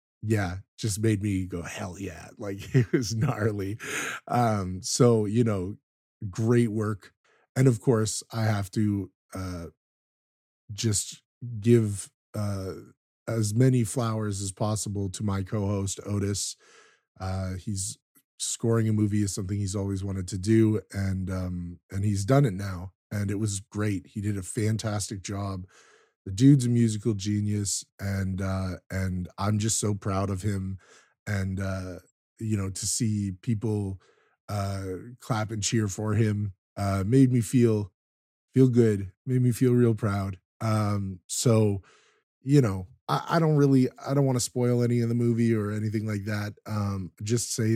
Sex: male